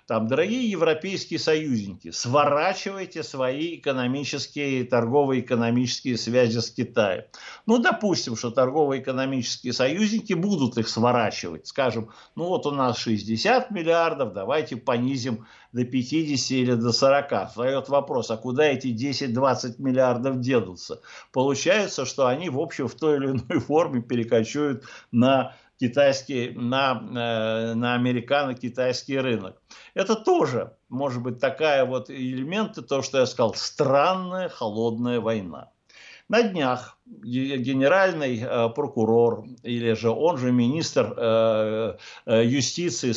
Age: 60-79